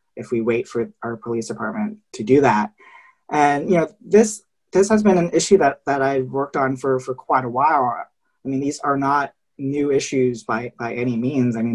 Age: 20-39